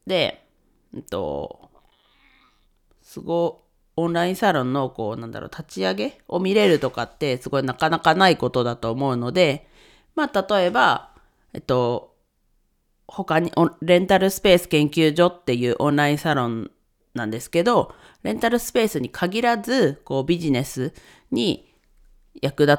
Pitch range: 120-175 Hz